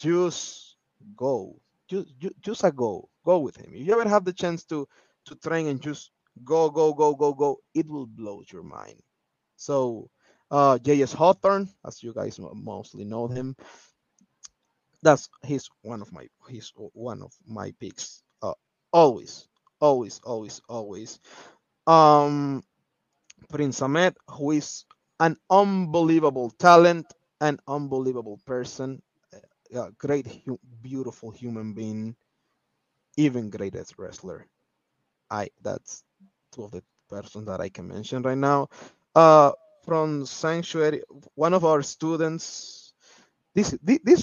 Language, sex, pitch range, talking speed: English, male, 125-165 Hz, 130 wpm